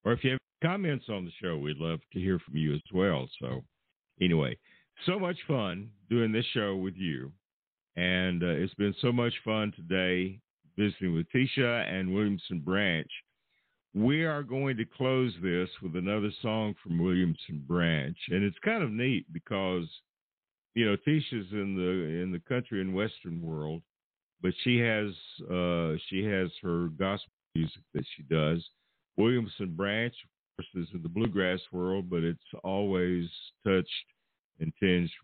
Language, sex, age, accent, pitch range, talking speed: English, male, 60-79, American, 85-115 Hz, 165 wpm